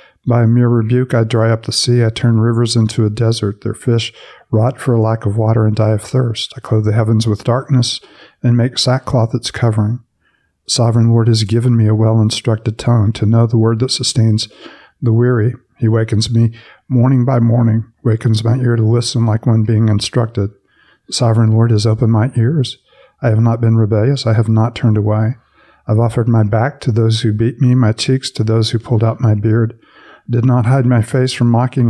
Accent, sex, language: American, male, English